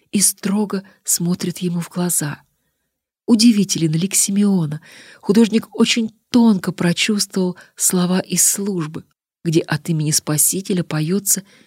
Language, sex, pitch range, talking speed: Russian, female, 160-205 Hz, 110 wpm